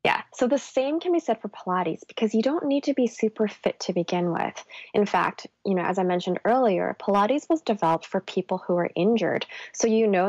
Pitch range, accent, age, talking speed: 175-230 Hz, American, 20-39, 225 wpm